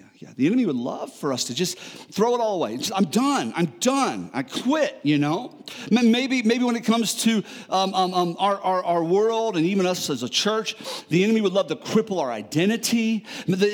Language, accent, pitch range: English, American, 200-275 Hz